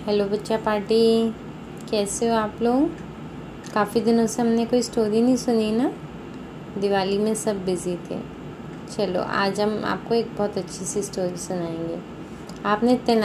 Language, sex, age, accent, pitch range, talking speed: Hindi, female, 20-39, native, 200-235 Hz, 145 wpm